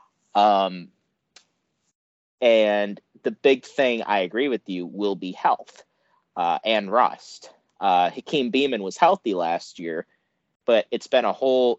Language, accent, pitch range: English, American, 95-115 Hz